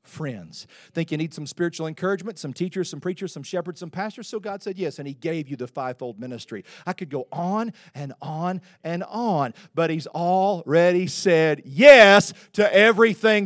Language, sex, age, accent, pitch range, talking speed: English, male, 40-59, American, 170-235 Hz, 185 wpm